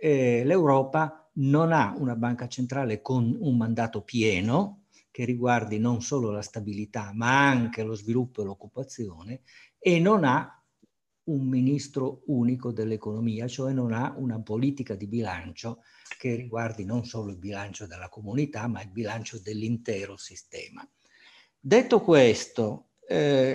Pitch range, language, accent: 110-155 Hz, Italian, native